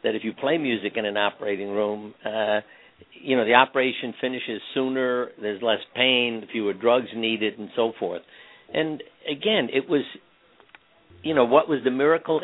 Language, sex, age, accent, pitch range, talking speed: English, male, 60-79, American, 110-140 Hz, 170 wpm